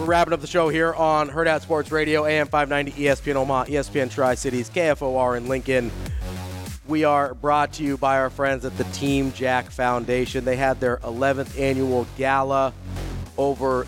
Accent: American